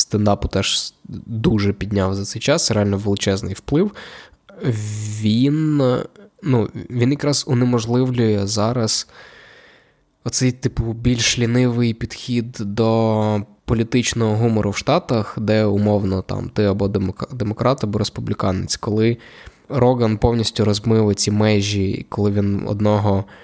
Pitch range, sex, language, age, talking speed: 100-120 Hz, male, Ukrainian, 20-39, 110 wpm